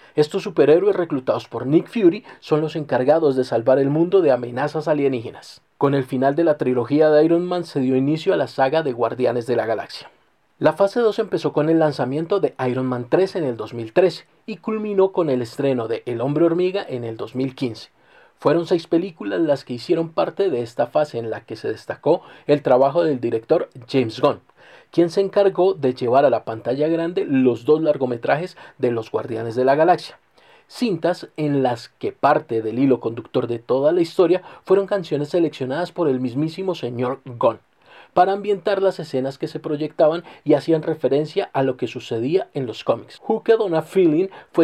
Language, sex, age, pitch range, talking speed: Spanish, male, 40-59, 130-180 Hz, 190 wpm